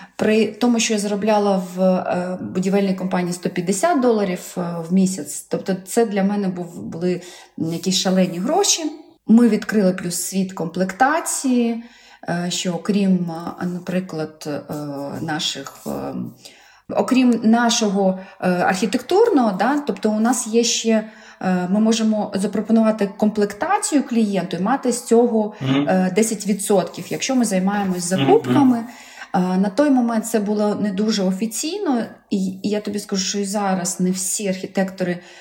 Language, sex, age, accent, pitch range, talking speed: Ukrainian, female, 30-49, native, 185-225 Hz, 115 wpm